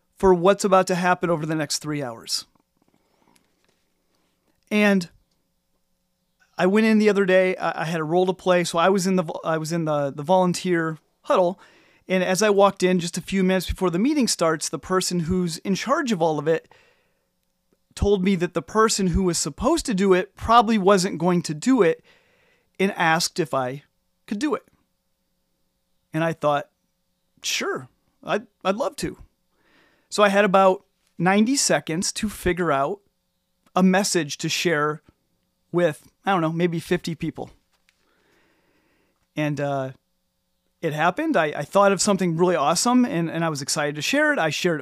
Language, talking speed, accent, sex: English, 175 wpm, American, male